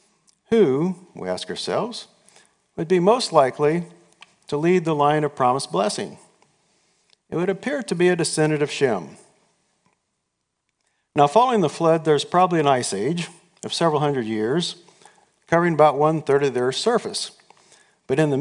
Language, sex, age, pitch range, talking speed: English, male, 50-69, 140-185 Hz, 155 wpm